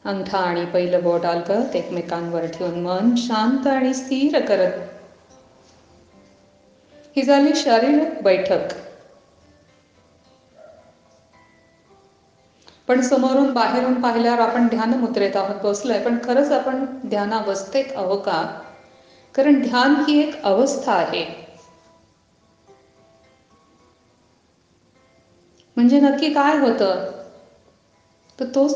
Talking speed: 65 wpm